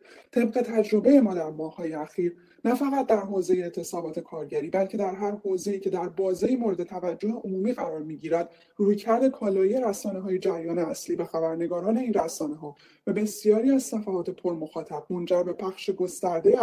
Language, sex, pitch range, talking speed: Persian, male, 170-215 Hz, 155 wpm